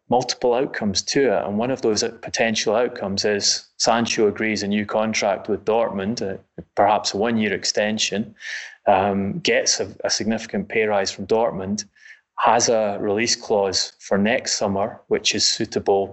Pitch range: 105-125 Hz